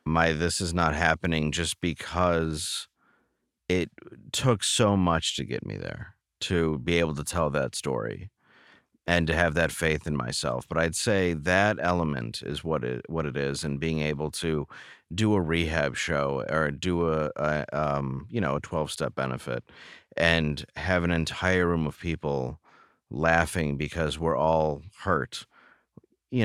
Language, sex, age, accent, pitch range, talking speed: English, male, 30-49, American, 75-95 Hz, 165 wpm